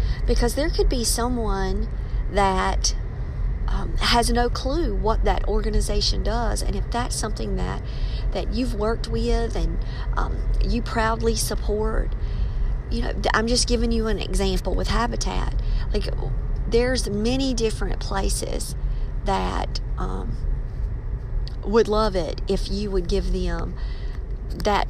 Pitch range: 170-225 Hz